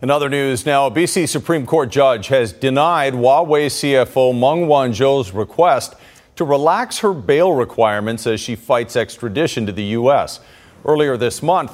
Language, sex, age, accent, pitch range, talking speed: English, male, 40-59, American, 130-175 Hz, 160 wpm